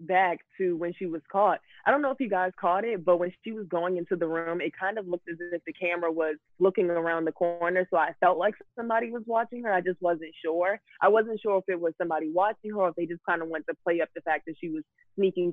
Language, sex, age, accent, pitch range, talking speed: English, female, 20-39, American, 165-185 Hz, 280 wpm